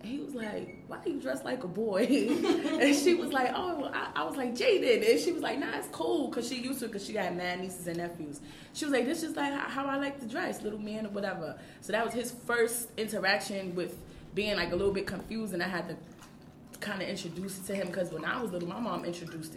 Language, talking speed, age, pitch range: English, 260 wpm, 20-39, 165-220 Hz